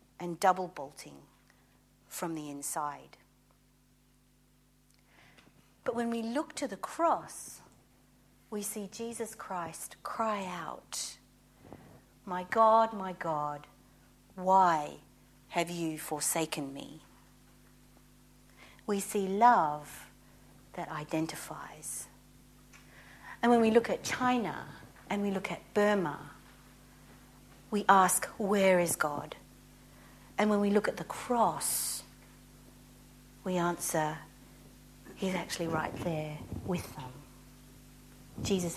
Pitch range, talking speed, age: 160-215 Hz, 100 wpm, 50-69